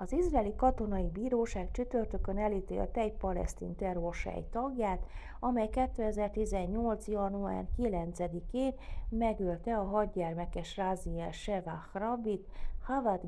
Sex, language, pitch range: female, Hungarian, 165-225 Hz